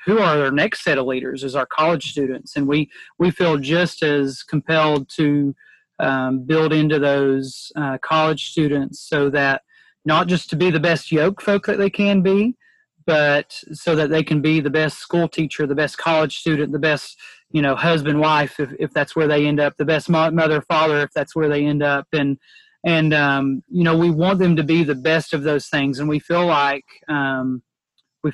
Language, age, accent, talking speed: English, 30-49, American, 210 wpm